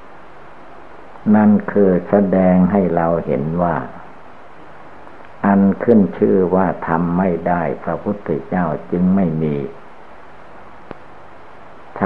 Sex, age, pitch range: male, 60-79, 80-100 Hz